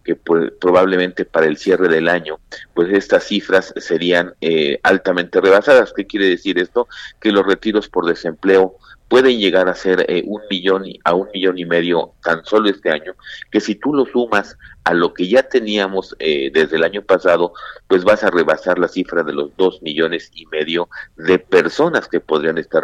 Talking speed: 190 wpm